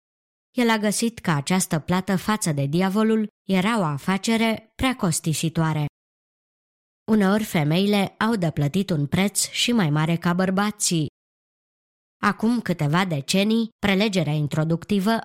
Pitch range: 160-210 Hz